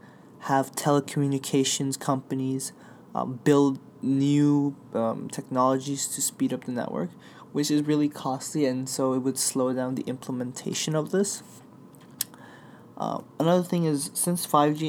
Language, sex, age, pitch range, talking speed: English, male, 20-39, 130-145 Hz, 135 wpm